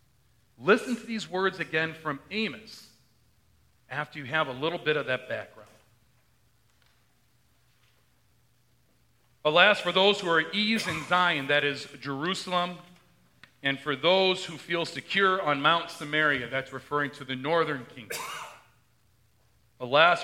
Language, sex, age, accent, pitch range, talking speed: English, male, 40-59, American, 125-160 Hz, 130 wpm